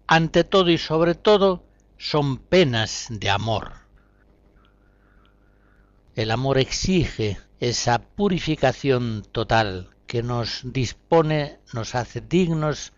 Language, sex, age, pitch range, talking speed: Spanish, male, 60-79, 100-155 Hz, 95 wpm